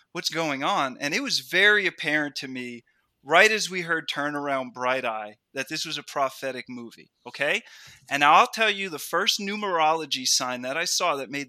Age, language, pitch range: 20-39, English, 135-180 Hz